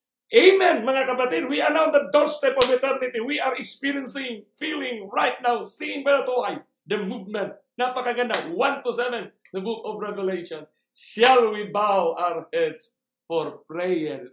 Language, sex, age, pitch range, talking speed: English, male, 60-79, 175-255 Hz, 160 wpm